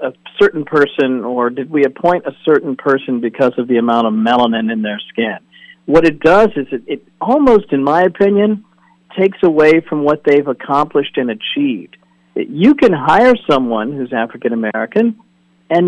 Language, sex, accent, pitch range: English, male, American, 130-195 Hz